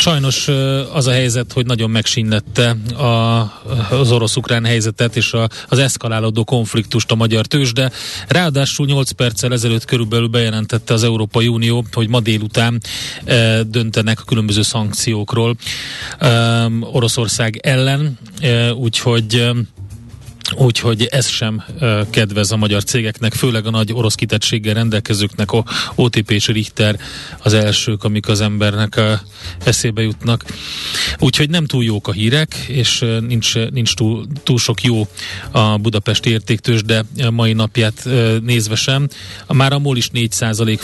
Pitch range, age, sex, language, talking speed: 110-125 Hz, 30-49, male, Hungarian, 130 wpm